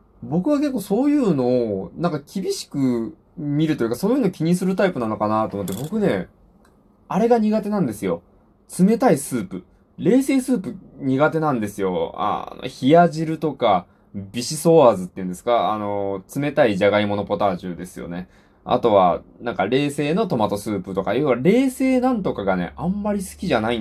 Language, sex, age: Japanese, male, 20-39